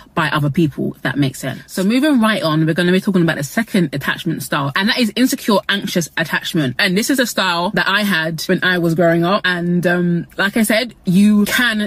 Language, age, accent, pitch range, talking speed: English, 20-39, British, 160-205 Hz, 235 wpm